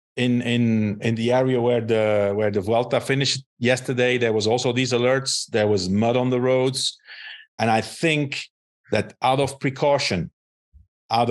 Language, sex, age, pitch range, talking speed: English, male, 50-69, 110-140 Hz, 165 wpm